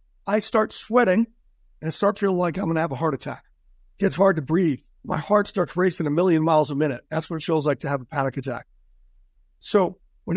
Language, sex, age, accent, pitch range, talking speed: English, male, 60-79, American, 160-215 Hz, 235 wpm